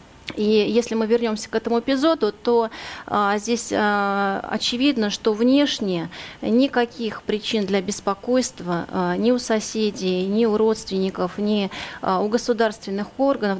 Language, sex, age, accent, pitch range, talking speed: Russian, female, 30-49, native, 195-230 Hz, 130 wpm